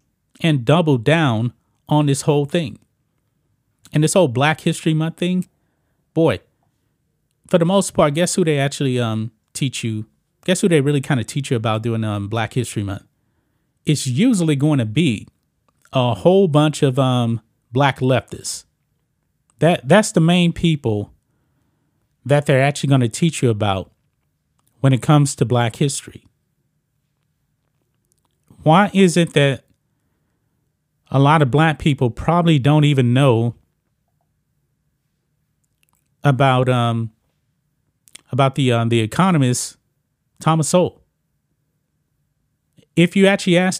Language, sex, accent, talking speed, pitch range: English, male, American, 130 wpm, 130-160 Hz